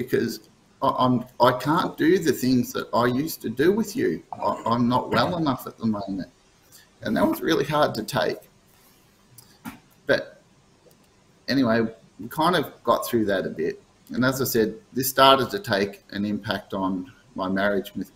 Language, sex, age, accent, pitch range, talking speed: English, male, 30-49, Australian, 95-120 Hz, 170 wpm